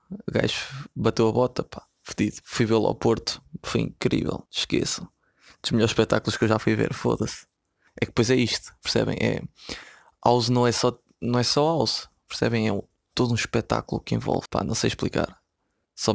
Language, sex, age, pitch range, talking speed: Portuguese, male, 20-39, 110-130 Hz, 185 wpm